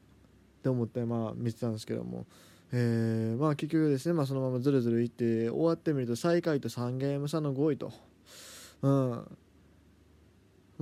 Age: 20-39